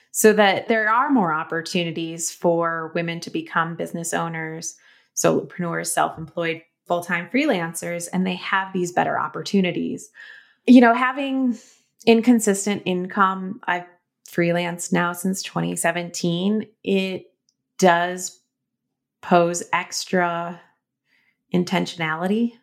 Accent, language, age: American, English, 30-49